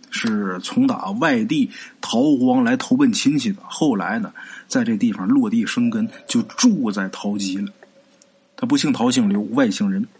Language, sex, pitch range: Chinese, male, 225-275 Hz